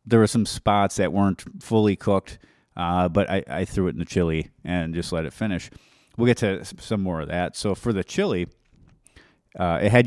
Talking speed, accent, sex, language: 215 wpm, American, male, English